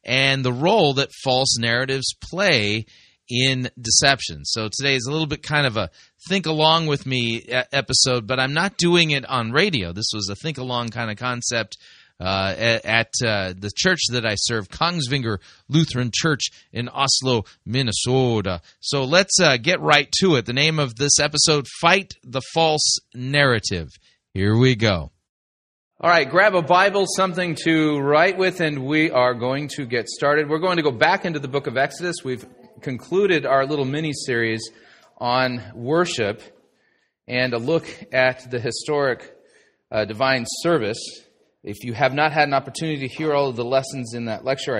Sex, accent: male, American